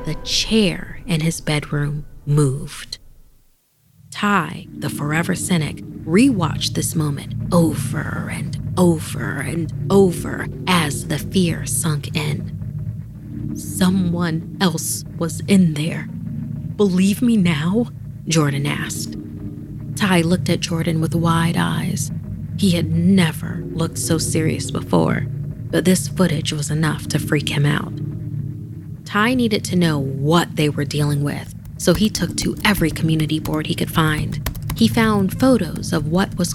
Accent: American